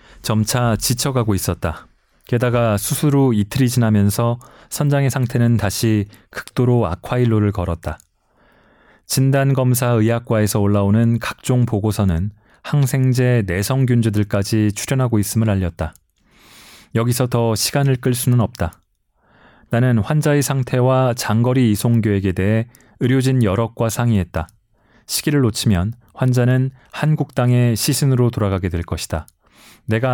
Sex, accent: male, native